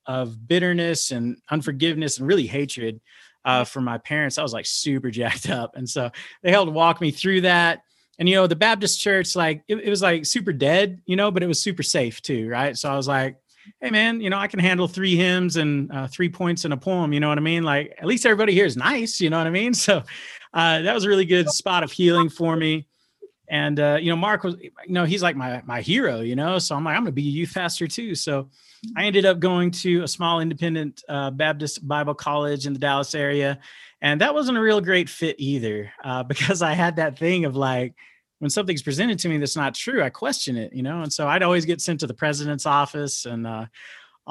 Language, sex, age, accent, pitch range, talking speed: English, male, 30-49, American, 140-185 Hz, 245 wpm